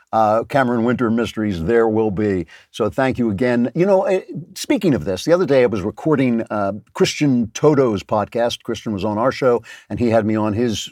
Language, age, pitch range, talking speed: English, 50-69, 115-155 Hz, 205 wpm